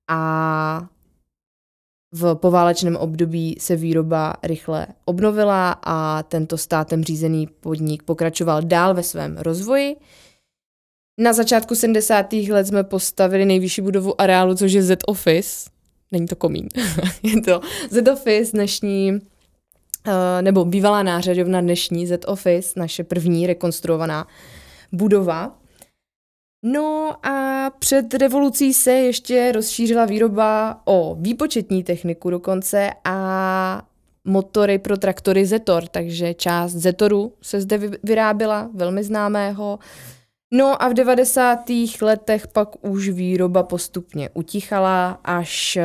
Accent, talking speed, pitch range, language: native, 110 wpm, 165-210 Hz, Czech